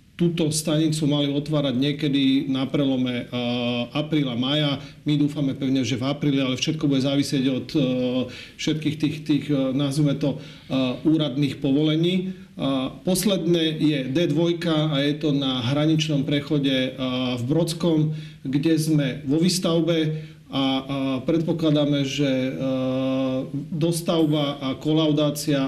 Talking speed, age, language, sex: 110 wpm, 40-59, Slovak, male